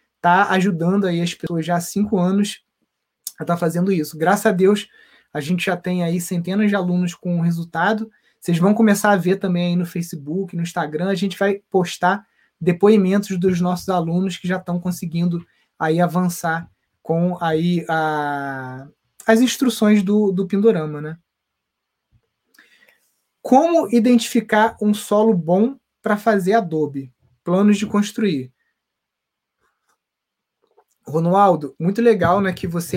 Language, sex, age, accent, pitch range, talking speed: Portuguese, male, 20-39, Brazilian, 170-200 Hz, 145 wpm